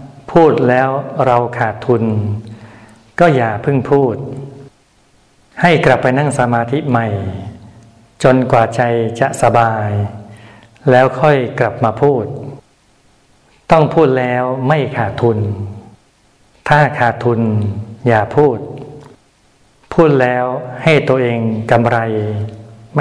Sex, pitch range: male, 110-135 Hz